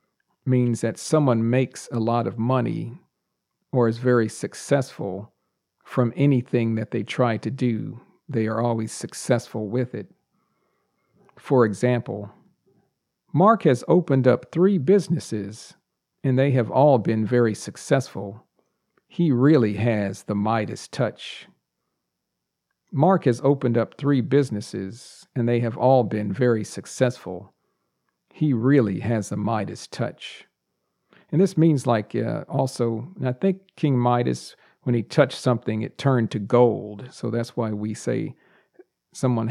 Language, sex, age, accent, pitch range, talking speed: English, male, 50-69, American, 110-135 Hz, 135 wpm